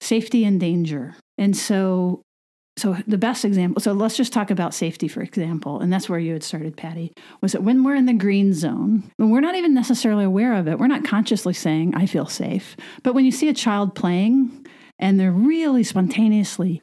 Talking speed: 205 wpm